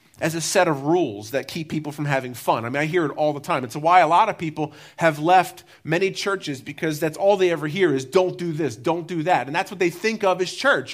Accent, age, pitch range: American, 30-49, 165-225 Hz